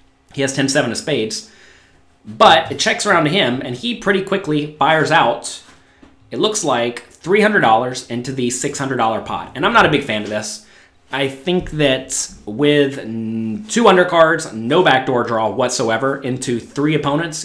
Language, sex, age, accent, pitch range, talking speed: English, male, 30-49, American, 110-150 Hz, 160 wpm